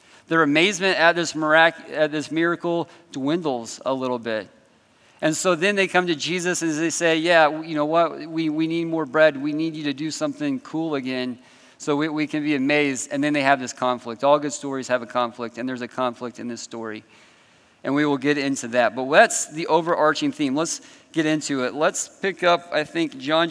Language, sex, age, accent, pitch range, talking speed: English, male, 40-59, American, 130-165 Hz, 215 wpm